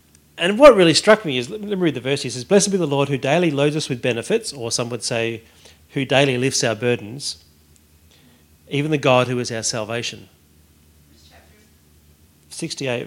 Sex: male